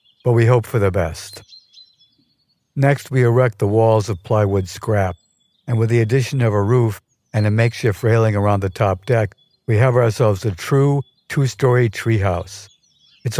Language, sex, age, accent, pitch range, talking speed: English, male, 60-79, American, 100-120 Hz, 165 wpm